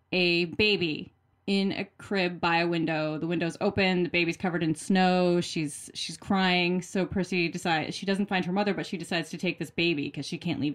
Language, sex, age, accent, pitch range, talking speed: English, female, 20-39, American, 160-195 Hz, 210 wpm